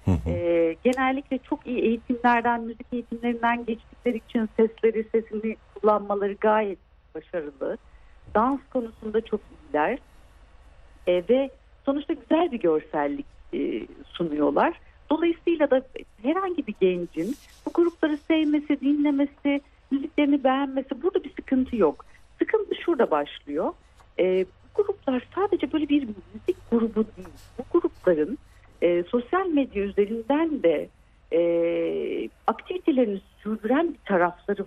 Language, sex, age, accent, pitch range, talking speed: Turkish, female, 60-79, native, 190-285 Hz, 105 wpm